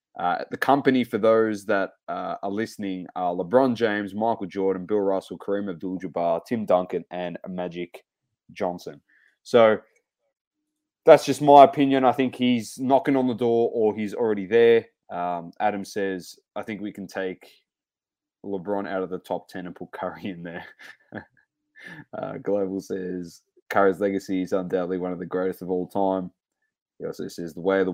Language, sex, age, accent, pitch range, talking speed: English, male, 20-39, Australian, 90-125 Hz, 170 wpm